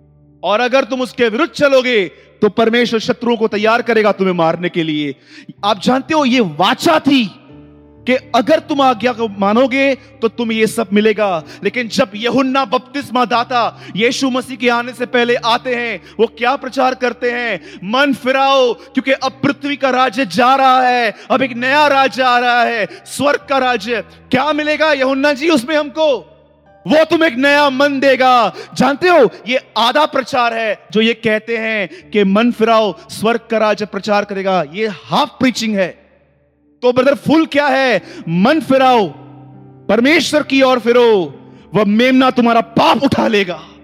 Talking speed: 165 wpm